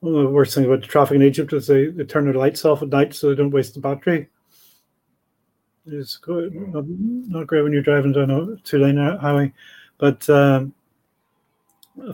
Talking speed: 190 wpm